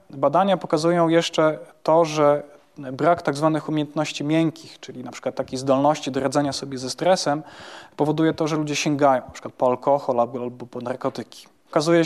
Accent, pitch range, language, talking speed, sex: native, 135-160 Hz, Polish, 165 wpm, male